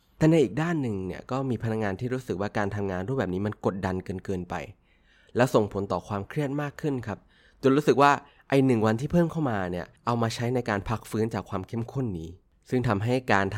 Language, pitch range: Thai, 90-125 Hz